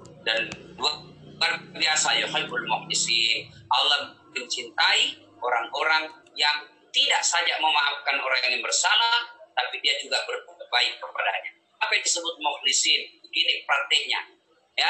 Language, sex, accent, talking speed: Indonesian, male, native, 105 wpm